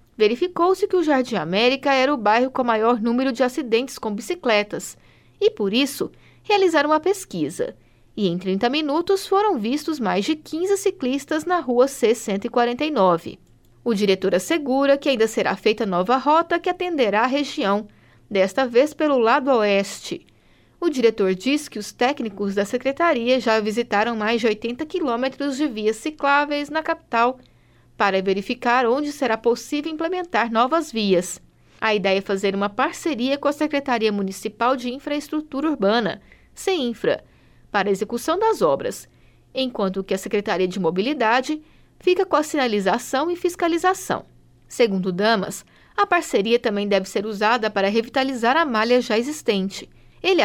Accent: Brazilian